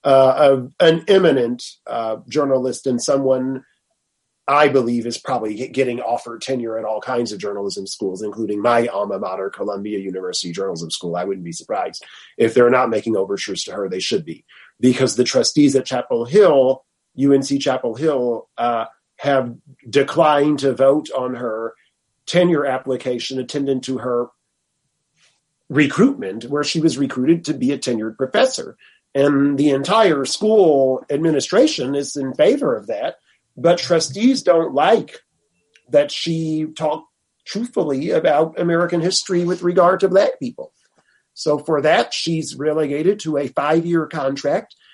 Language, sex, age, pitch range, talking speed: English, male, 30-49, 120-155 Hz, 145 wpm